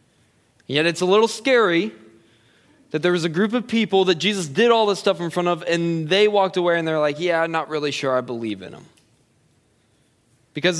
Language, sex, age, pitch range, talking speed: English, male, 20-39, 145-195 Hz, 210 wpm